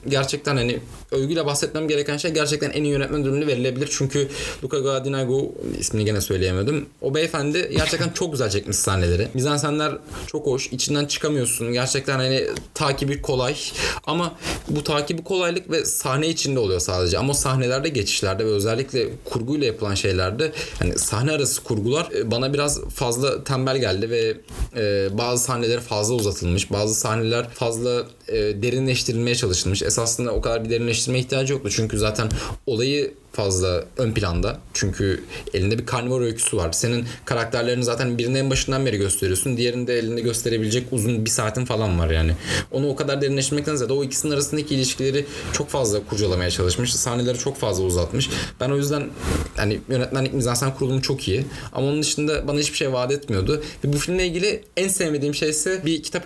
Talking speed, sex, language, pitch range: 160 wpm, male, Turkish, 110-145 Hz